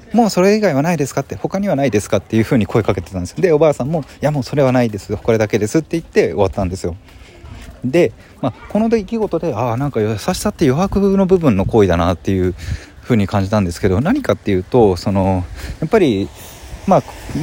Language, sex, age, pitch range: Japanese, male, 20-39, 95-150 Hz